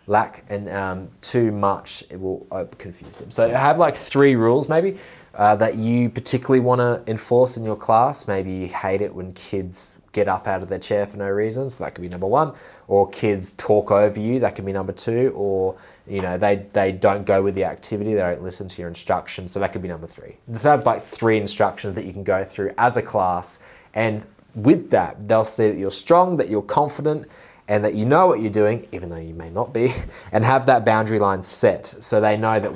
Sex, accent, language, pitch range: male, Australian, English, 95-120 Hz